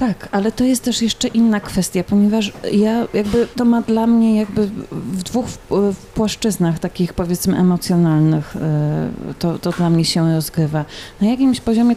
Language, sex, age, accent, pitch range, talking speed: Polish, female, 30-49, native, 170-190 Hz, 170 wpm